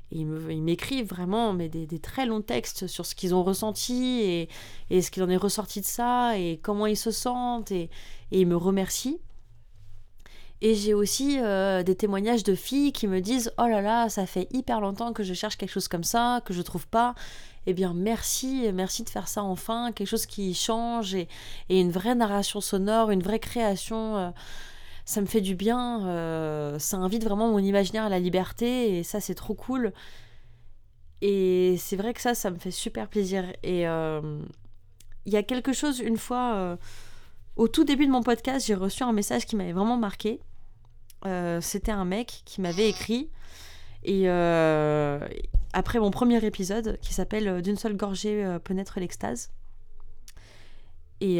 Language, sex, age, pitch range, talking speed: French, female, 30-49, 170-225 Hz, 190 wpm